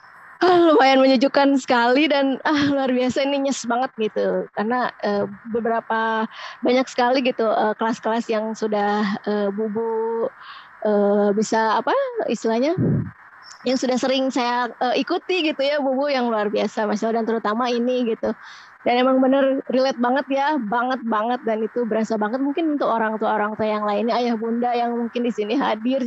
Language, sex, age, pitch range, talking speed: Indonesian, female, 20-39, 225-270 Hz, 160 wpm